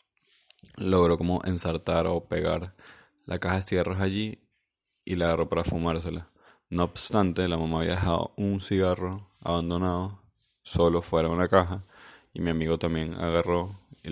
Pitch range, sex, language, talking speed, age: 85-95 Hz, male, Spanish, 150 wpm, 20-39